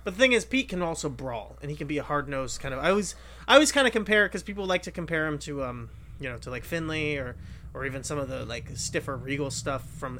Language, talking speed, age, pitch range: English, 275 wpm, 30-49, 135-180 Hz